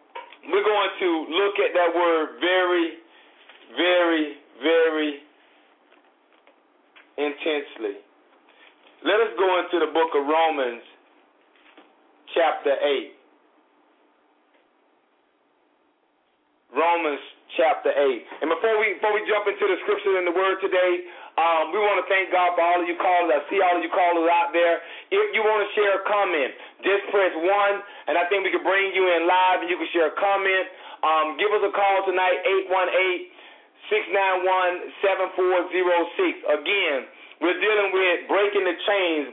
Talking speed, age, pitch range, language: 145 wpm, 40-59, 170-205 Hz, English